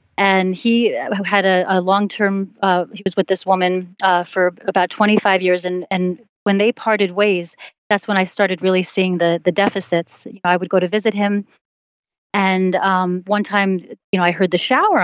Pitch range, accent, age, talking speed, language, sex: 180-210 Hz, American, 30-49, 205 wpm, English, female